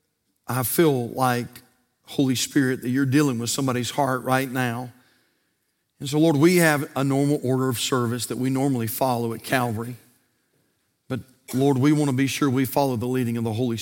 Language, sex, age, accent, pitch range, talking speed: English, male, 50-69, American, 110-150 Hz, 185 wpm